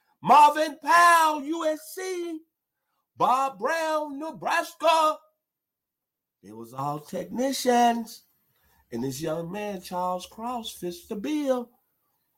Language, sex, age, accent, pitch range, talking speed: English, male, 50-69, American, 175-265 Hz, 90 wpm